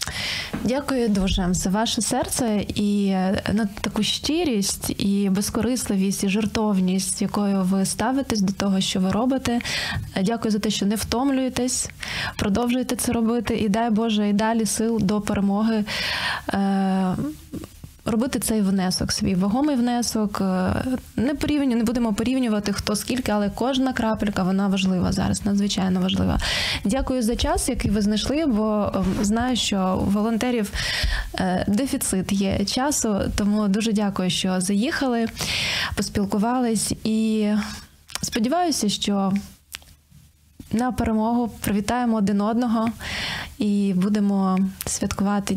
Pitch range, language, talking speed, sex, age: 200-235 Hz, Ukrainian, 120 wpm, female, 20-39